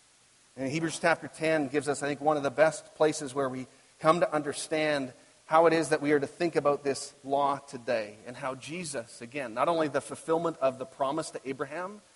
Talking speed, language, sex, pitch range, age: 210 wpm, English, male, 130-155 Hz, 40-59